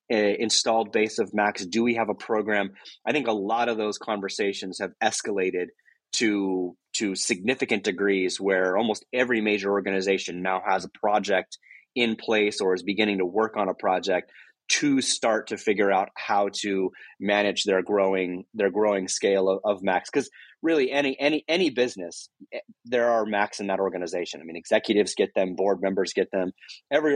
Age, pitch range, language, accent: 30-49, 95-110 Hz, English, American